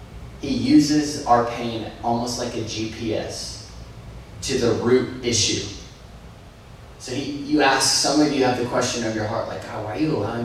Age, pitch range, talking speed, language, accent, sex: 20-39, 105-125 Hz, 180 wpm, English, American, male